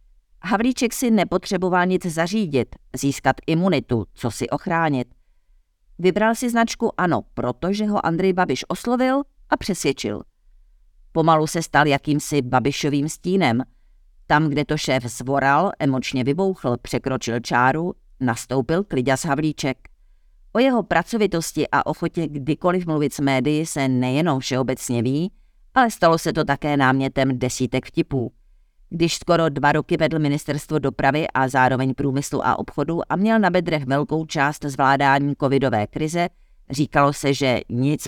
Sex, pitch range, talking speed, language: female, 130-165 Hz, 135 wpm, Czech